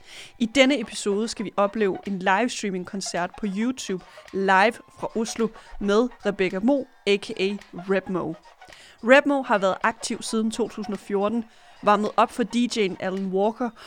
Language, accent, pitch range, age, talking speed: Danish, native, 195-240 Hz, 30-49, 135 wpm